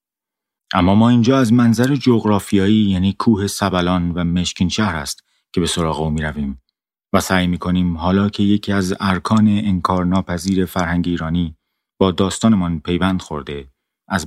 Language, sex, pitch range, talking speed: Persian, male, 85-105 Hz, 145 wpm